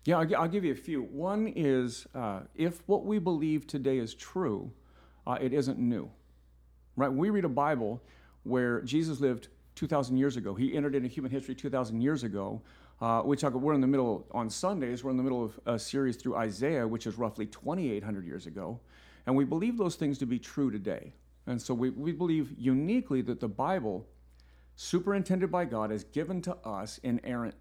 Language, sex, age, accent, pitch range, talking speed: English, male, 50-69, American, 110-140 Hz, 190 wpm